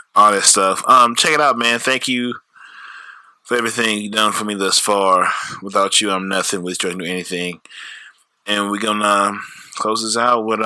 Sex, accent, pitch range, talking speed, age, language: male, American, 95-125 Hz, 190 wpm, 20-39, English